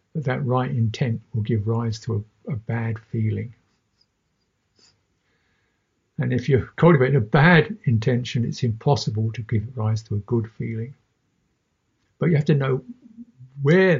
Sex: male